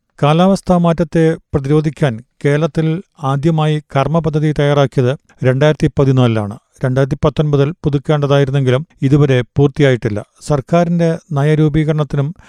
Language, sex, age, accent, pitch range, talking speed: Malayalam, male, 40-59, native, 140-155 Hz, 80 wpm